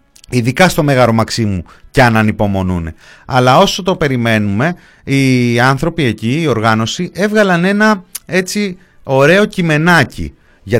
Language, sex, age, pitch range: Greek, male, 30-49, 110-180 Hz